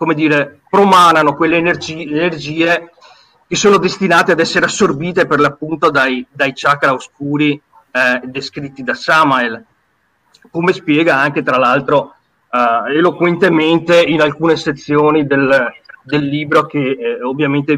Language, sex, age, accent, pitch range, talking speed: Italian, male, 30-49, native, 145-175 Hz, 125 wpm